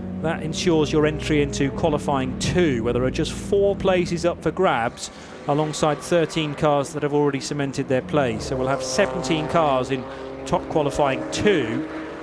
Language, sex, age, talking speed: English, male, 30-49, 165 wpm